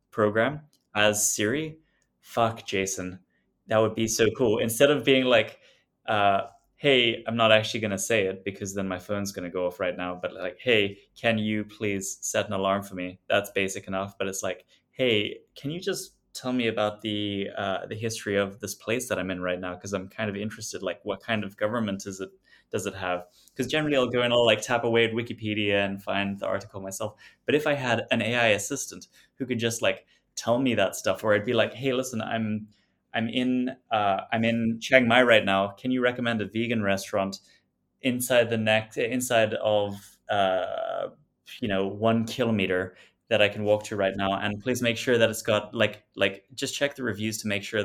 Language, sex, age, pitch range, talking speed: English, male, 20-39, 100-120 Hz, 210 wpm